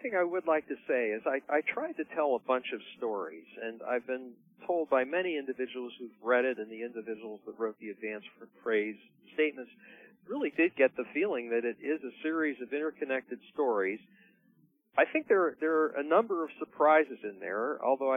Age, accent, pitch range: 50-69, American, 120-150 Hz